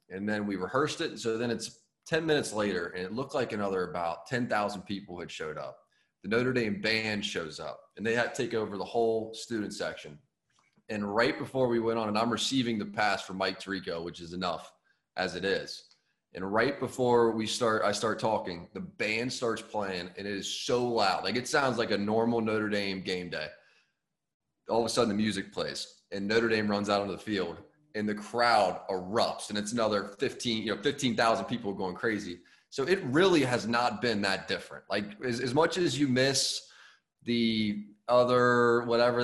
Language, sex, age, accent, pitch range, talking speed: English, male, 30-49, American, 105-125 Hz, 200 wpm